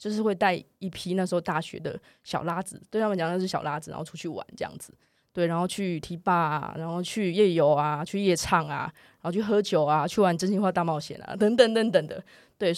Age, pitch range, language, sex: 20-39, 170-205 Hz, Chinese, female